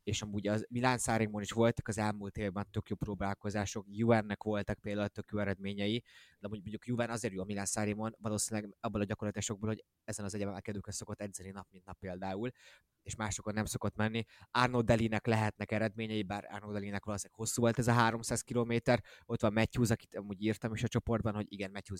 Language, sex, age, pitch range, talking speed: Hungarian, male, 20-39, 100-115 Hz, 200 wpm